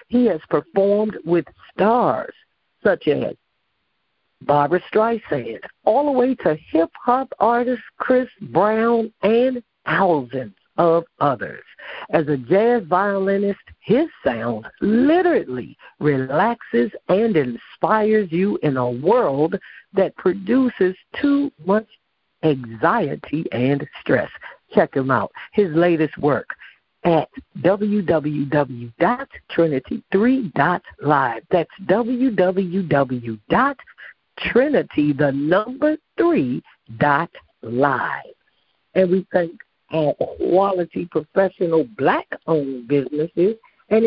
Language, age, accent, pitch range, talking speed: English, 60-79, American, 150-235 Hz, 85 wpm